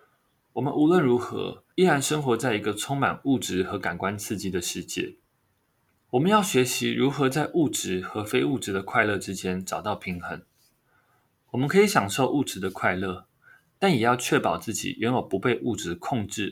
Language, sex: Chinese, male